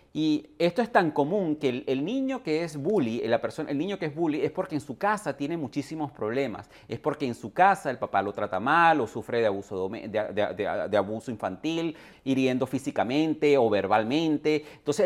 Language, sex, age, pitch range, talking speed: Spanish, male, 30-49, 130-175 Hz, 210 wpm